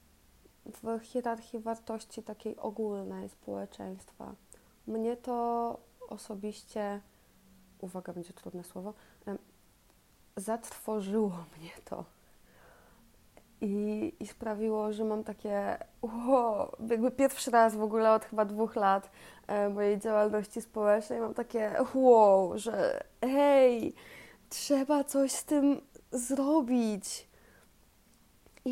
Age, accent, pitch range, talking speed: 20-39, native, 200-250 Hz, 95 wpm